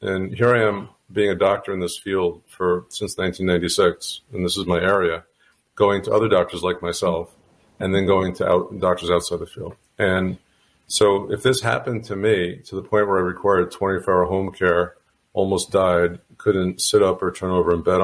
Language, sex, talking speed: English, male, 195 wpm